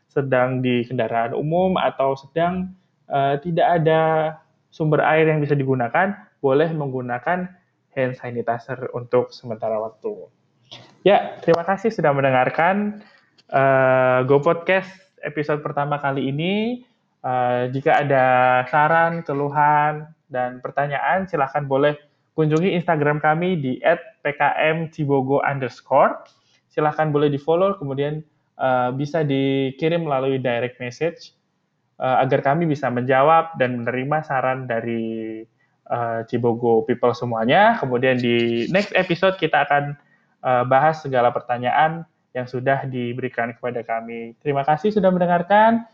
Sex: male